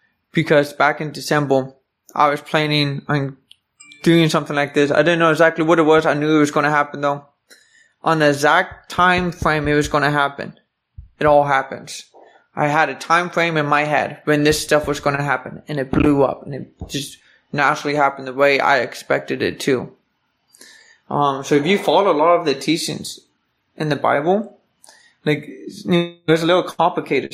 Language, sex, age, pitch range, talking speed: English, male, 20-39, 140-165 Hz, 195 wpm